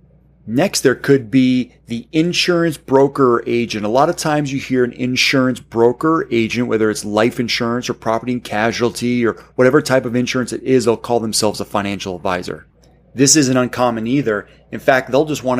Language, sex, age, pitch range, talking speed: English, male, 30-49, 110-140 Hz, 190 wpm